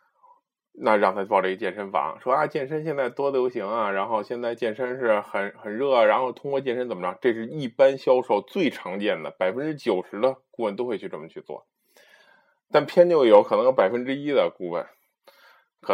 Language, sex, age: Chinese, male, 20-39